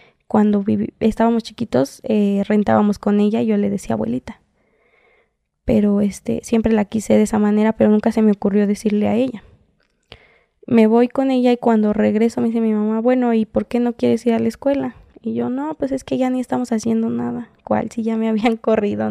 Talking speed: 210 wpm